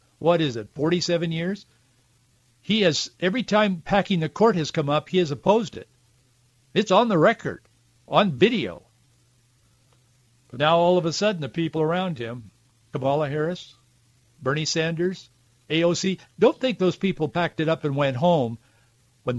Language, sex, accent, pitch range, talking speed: English, male, American, 125-170 Hz, 160 wpm